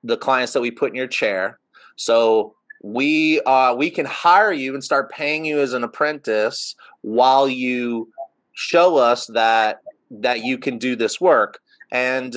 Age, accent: 30-49, American